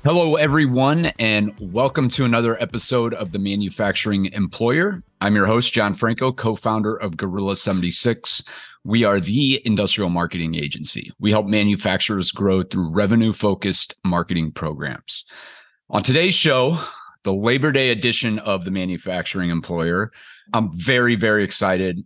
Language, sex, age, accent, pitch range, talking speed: English, male, 30-49, American, 95-120 Hz, 135 wpm